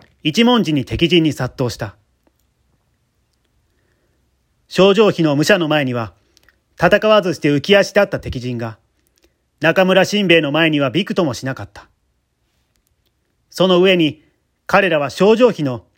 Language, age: Japanese, 40-59